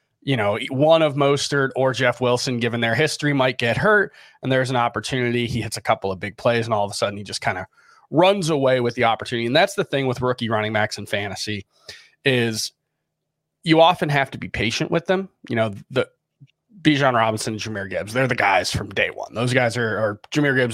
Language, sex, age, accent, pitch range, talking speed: English, male, 30-49, American, 110-140 Hz, 230 wpm